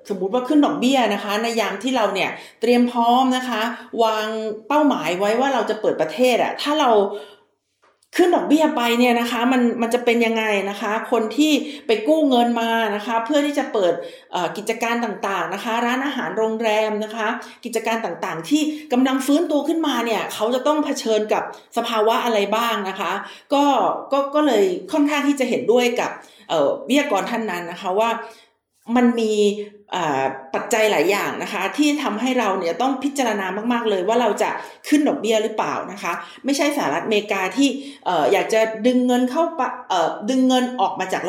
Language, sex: Thai, female